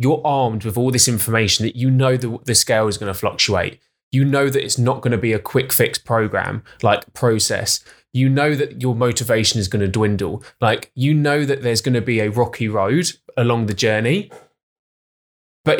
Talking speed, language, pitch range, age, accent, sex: 205 wpm, English, 120-145 Hz, 20-39, British, male